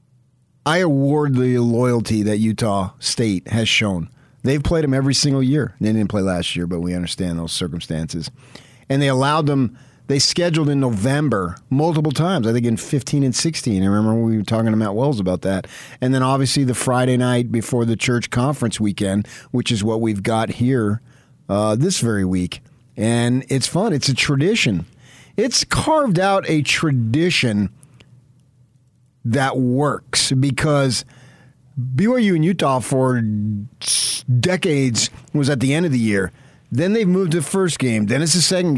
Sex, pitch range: male, 115-145 Hz